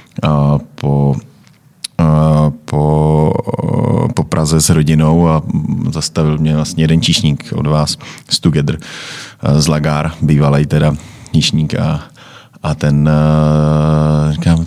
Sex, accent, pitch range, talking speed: male, native, 75-85 Hz, 115 wpm